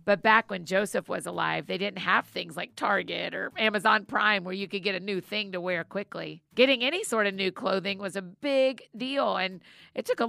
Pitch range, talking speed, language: 180-225 Hz, 225 wpm, English